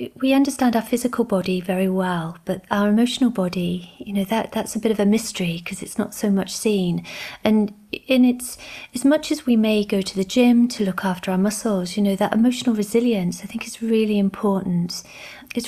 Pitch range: 185-220 Hz